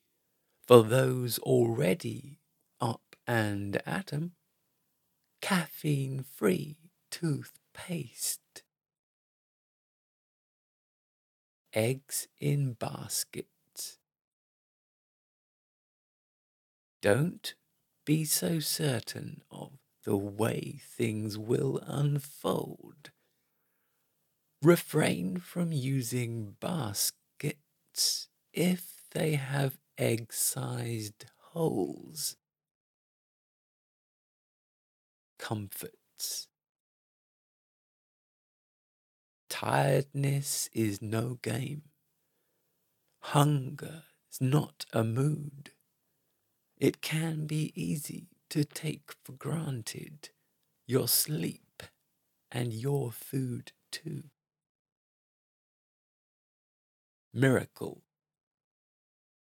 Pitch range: 125-155 Hz